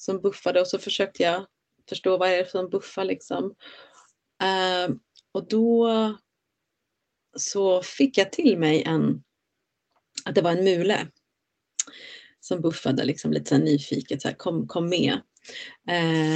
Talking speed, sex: 135 wpm, female